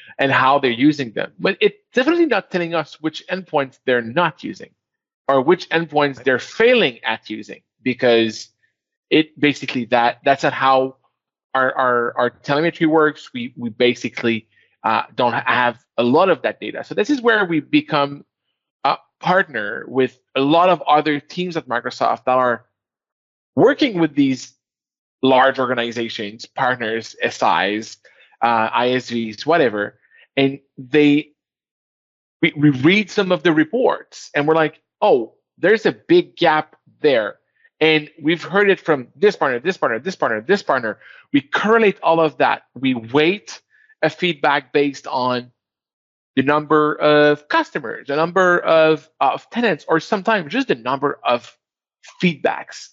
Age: 20-39